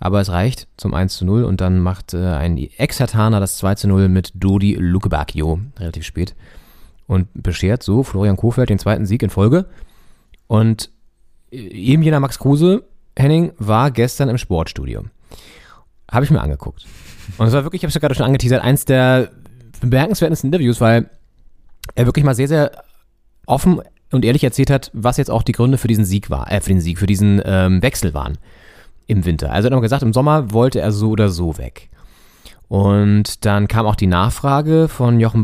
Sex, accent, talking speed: male, German, 185 wpm